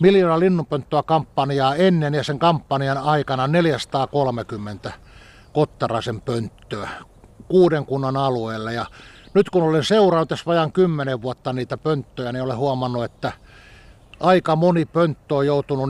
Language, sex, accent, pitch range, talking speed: Finnish, male, native, 125-160 Hz, 130 wpm